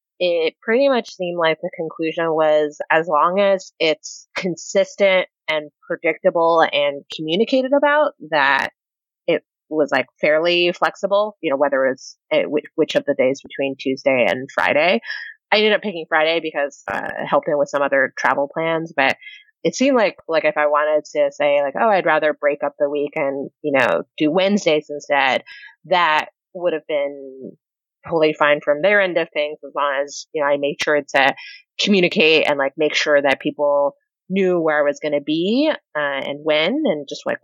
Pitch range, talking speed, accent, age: 145-195 Hz, 185 wpm, American, 30-49